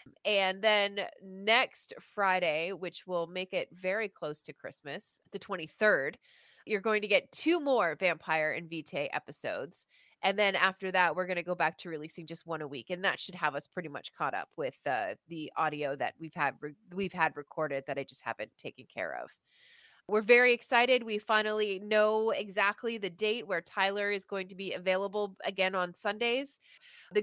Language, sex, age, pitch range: English, female, 20-39, 170-215 Hz